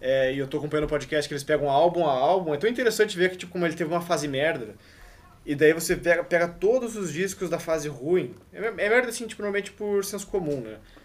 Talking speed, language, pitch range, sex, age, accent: 250 wpm, Portuguese, 140-195 Hz, male, 20-39, Brazilian